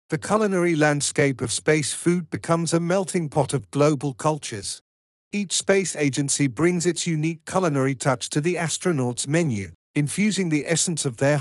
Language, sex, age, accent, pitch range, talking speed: English, male, 50-69, British, 135-170 Hz, 160 wpm